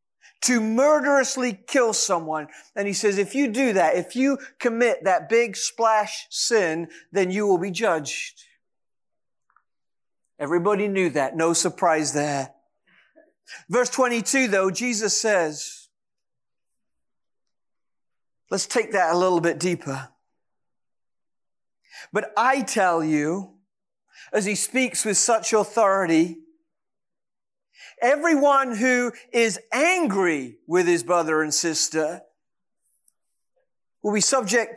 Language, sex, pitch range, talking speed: English, male, 185-275 Hz, 110 wpm